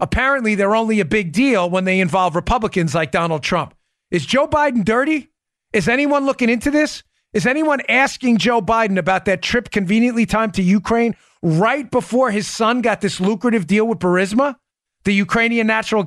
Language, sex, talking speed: English, male, 175 wpm